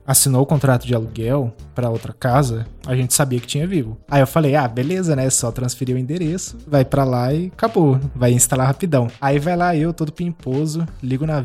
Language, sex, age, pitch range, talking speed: Portuguese, male, 20-39, 125-165 Hz, 215 wpm